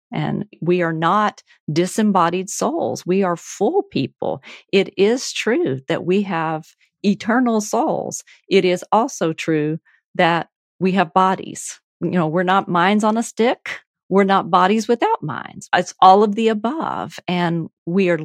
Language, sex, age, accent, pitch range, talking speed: English, female, 40-59, American, 170-215 Hz, 155 wpm